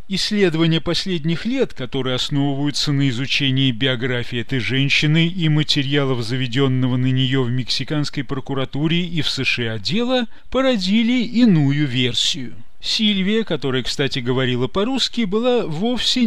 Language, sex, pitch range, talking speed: Russian, male, 140-220 Hz, 120 wpm